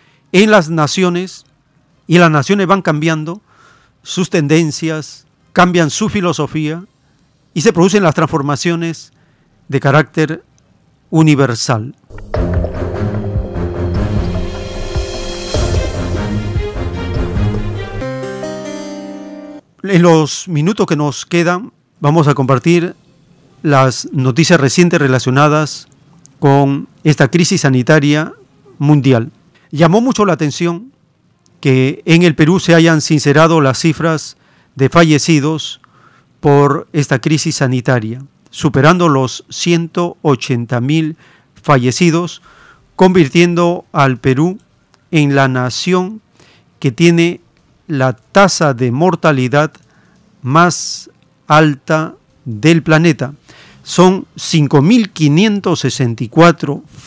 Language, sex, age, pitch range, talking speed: Spanish, male, 50-69, 130-170 Hz, 85 wpm